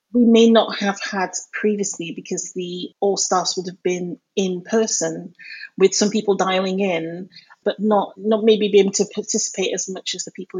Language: English